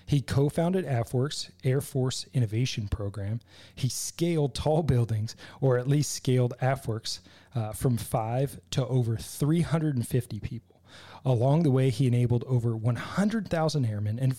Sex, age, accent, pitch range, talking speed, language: male, 30-49, American, 105-140 Hz, 140 wpm, English